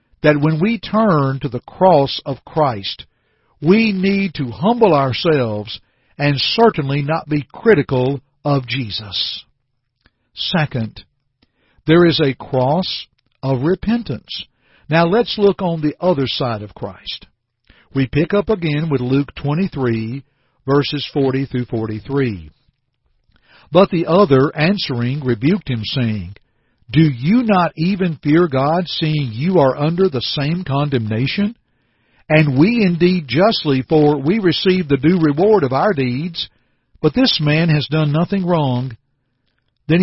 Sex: male